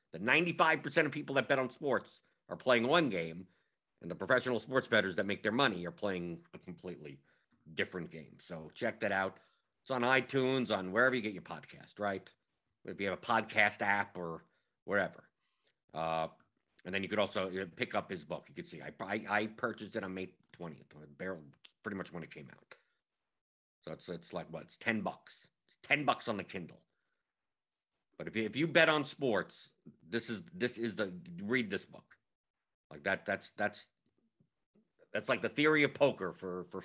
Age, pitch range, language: 50-69, 90-130 Hz, English